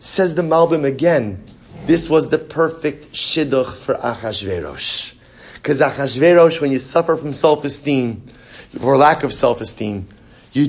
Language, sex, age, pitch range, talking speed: English, male, 30-49, 130-170 Hz, 130 wpm